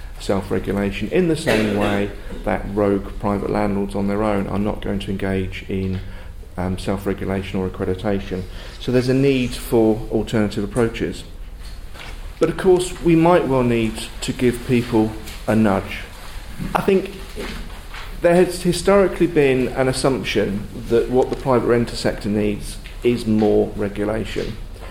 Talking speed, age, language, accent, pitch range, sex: 145 wpm, 40-59, English, British, 100-120 Hz, male